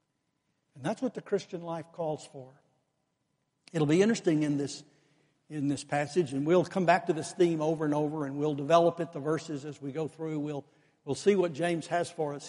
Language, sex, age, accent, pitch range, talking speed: English, male, 60-79, American, 150-185 Hz, 210 wpm